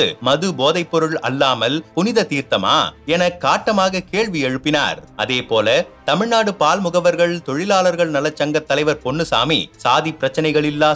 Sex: male